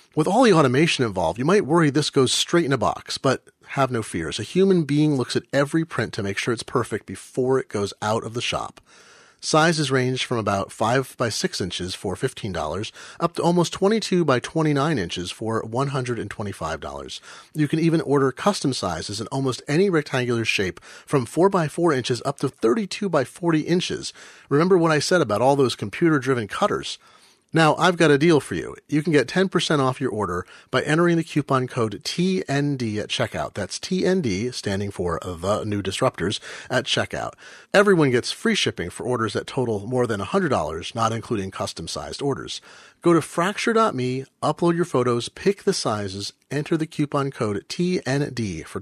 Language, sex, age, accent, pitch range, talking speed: English, male, 40-59, American, 110-160 Hz, 180 wpm